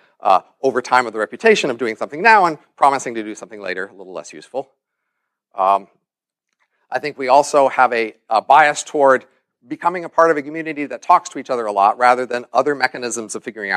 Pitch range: 125-170 Hz